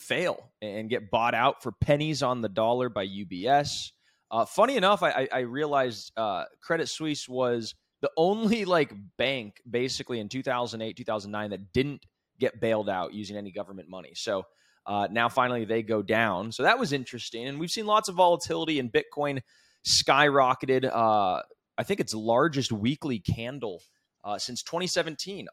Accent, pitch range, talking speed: American, 115-160 Hz, 160 wpm